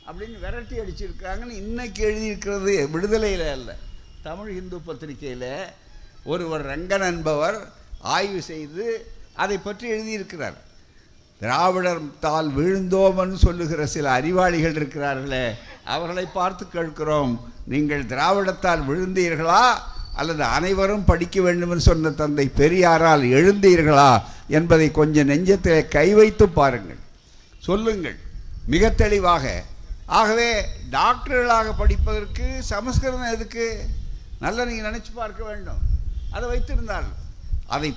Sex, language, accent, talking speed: male, Tamil, native, 95 wpm